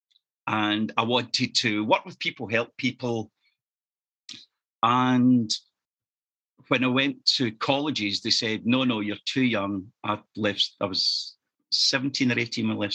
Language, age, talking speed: English, 50-69, 150 wpm